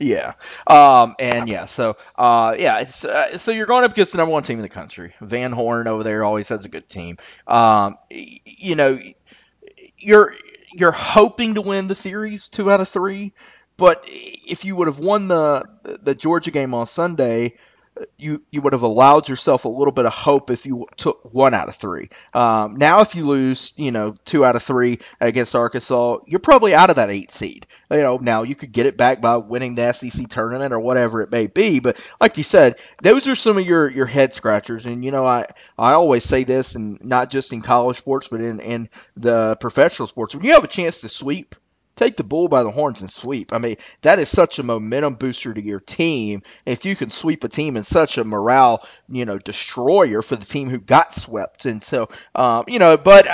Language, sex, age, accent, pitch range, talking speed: English, male, 30-49, American, 115-160 Hz, 220 wpm